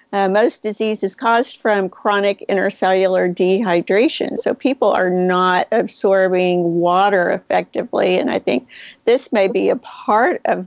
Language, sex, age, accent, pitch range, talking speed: English, female, 50-69, American, 195-250 Hz, 140 wpm